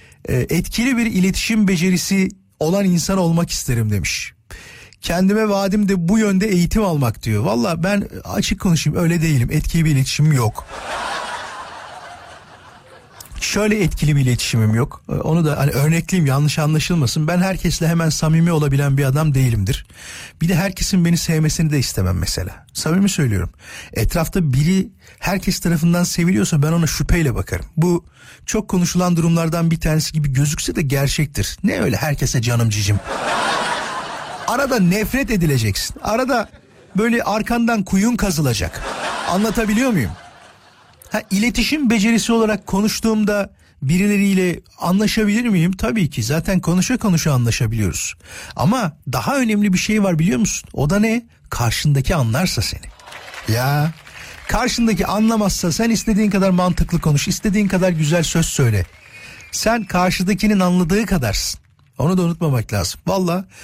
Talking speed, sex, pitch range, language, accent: 130 wpm, male, 140-200 Hz, Turkish, native